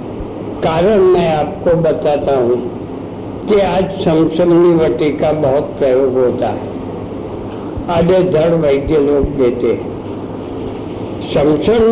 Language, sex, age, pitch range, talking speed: Hindi, male, 60-79, 145-180 Hz, 100 wpm